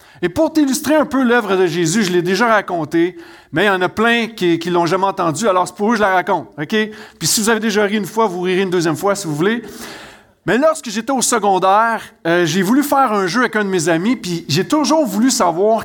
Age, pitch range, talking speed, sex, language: 40-59, 170-230 Hz, 260 wpm, male, French